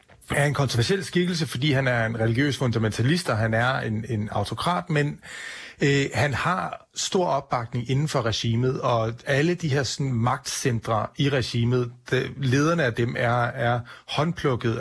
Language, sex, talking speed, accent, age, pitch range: Danish, male, 155 wpm, native, 30-49, 110-135 Hz